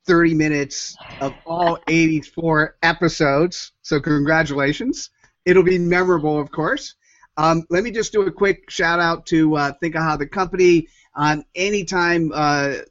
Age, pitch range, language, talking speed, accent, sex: 40-59, 140-175 Hz, English, 150 wpm, American, male